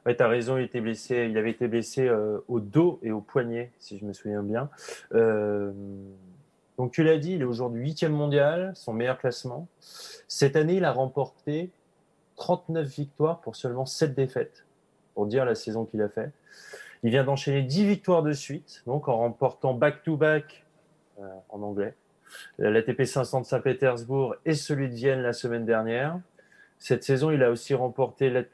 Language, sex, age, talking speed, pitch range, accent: French, male, 20-39, 180 wpm, 120-155 Hz, French